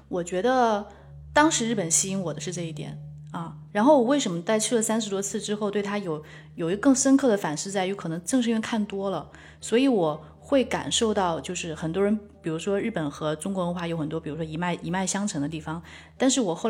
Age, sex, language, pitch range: 20-39, female, Chinese, 165-215 Hz